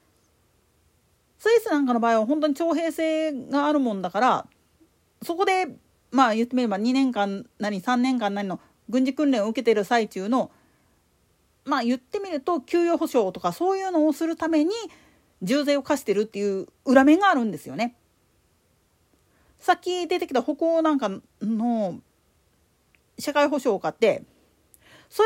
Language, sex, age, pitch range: Japanese, female, 40-59, 235-350 Hz